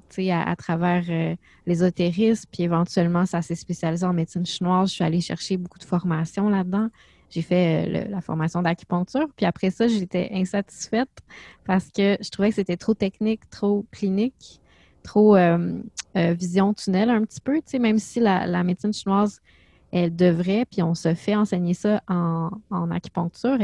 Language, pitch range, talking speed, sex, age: French, 180-210 Hz, 180 wpm, female, 20-39